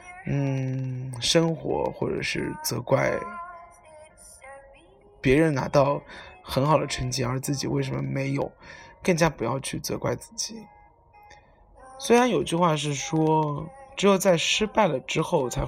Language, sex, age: Chinese, male, 20-39